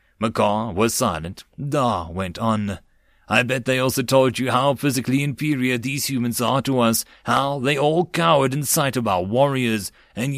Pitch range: 110-150 Hz